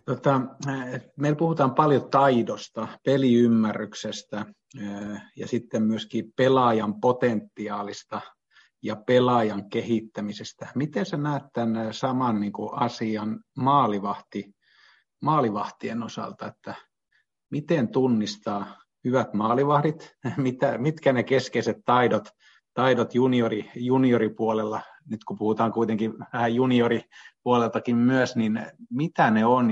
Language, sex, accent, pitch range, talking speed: Finnish, male, native, 110-130 Hz, 90 wpm